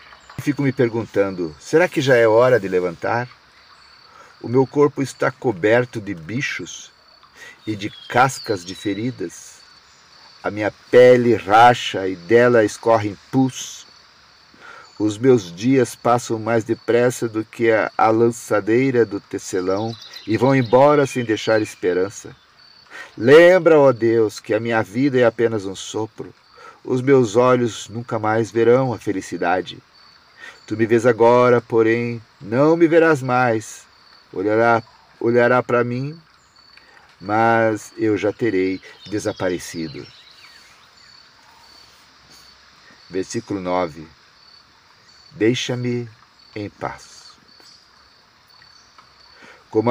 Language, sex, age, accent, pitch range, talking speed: Portuguese, male, 50-69, Brazilian, 105-125 Hz, 110 wpm